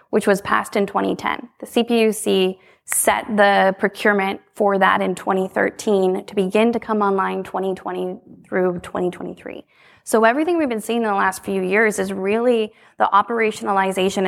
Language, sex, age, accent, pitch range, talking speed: English, female, 20-39, American, 190-220 Hz, 150 wpm